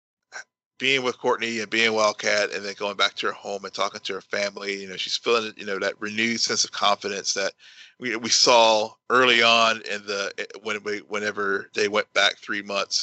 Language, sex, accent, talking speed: English, male, American, 205 wpm